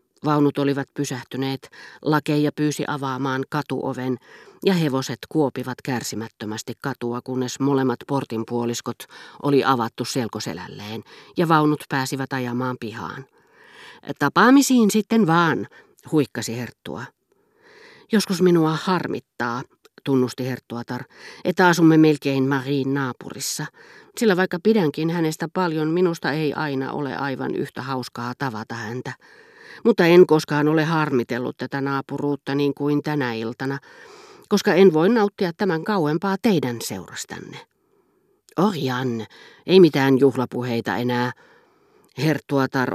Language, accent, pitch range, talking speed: Finnish, native, 125-160 Hz, 110 wpm